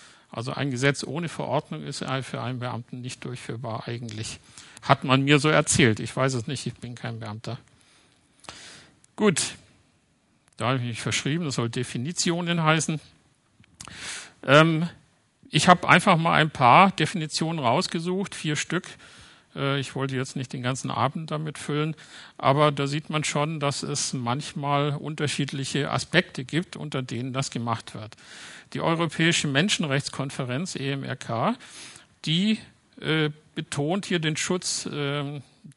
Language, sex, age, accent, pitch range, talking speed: German, male, 50-69, German, 130-155 Hz, 135 wpm